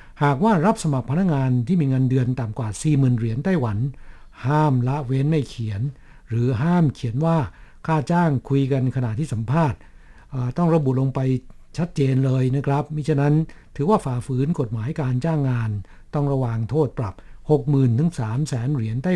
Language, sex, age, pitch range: Thai, male, 60-79, 125-155 Hz